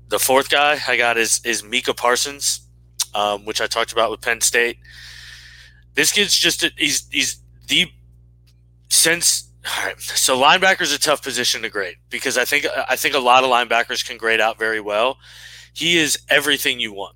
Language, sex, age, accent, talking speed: English, male, 20-39, American, 180 wpm